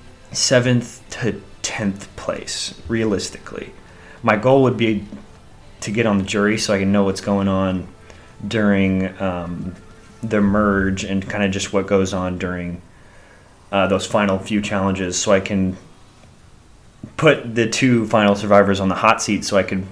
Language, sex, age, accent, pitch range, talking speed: English, male, 30-49, American, 95-110 Hz, 160 wpm